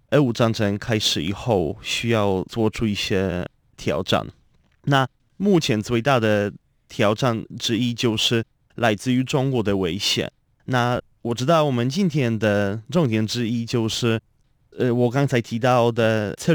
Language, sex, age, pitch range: Chinese, male, 20-39, 105-125 Hz